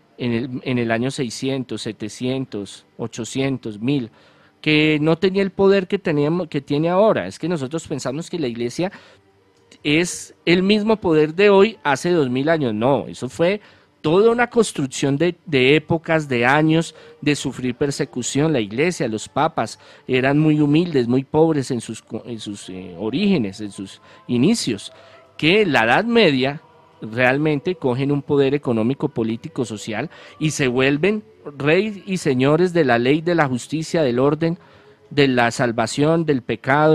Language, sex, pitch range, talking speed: Spanish, male, 120-160 Hz, 160 wpm